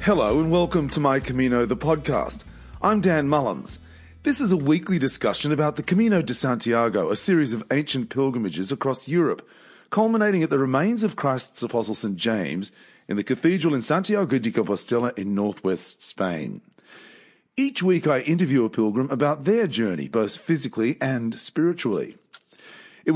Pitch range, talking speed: 115-165 Hz, 160 wpm